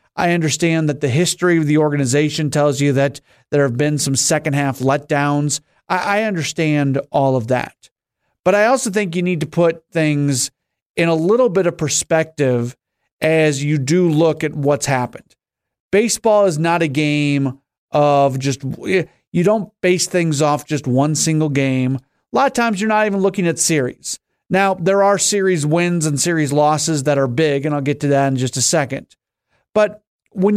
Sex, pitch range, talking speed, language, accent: male, 145-185 Hz, 185 wpm, English, American